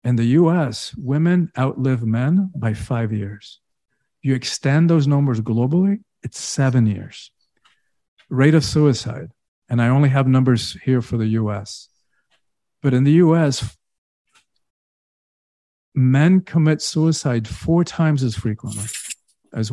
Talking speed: 125 wpm